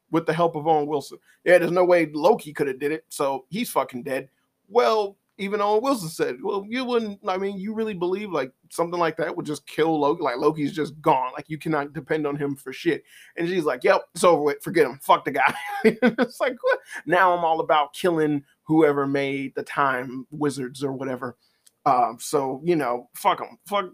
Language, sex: English, male